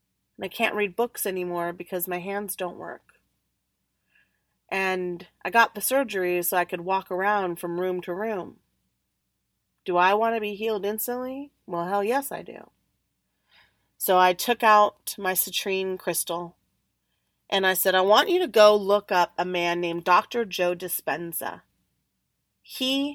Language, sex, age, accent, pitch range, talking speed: English, female, 30-49, American, 185-235 Hz, 155 wpm